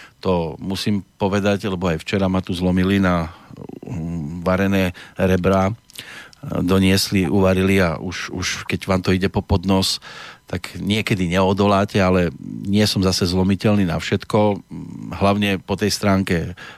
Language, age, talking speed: Slovak, 40-59, 130 wpm